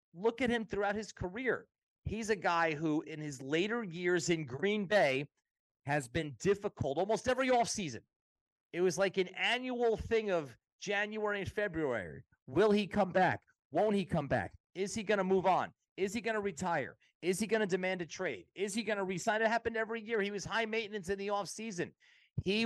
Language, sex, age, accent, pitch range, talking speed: English, male, 30-49, American, 140-210 Hz, 200 wpm